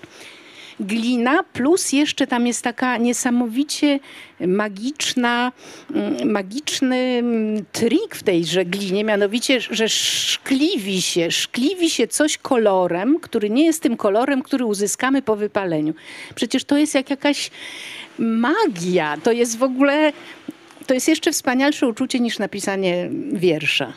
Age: 50-69